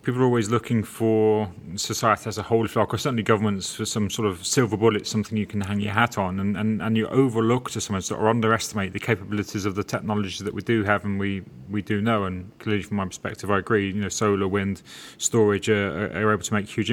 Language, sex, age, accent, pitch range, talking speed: English, male, 30-49, British, 105-115 Hz, 240 wpm